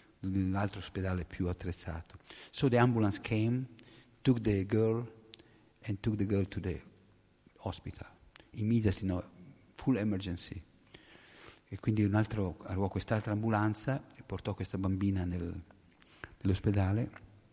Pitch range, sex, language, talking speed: 100-130 Hz, male, Italian, 120 wpm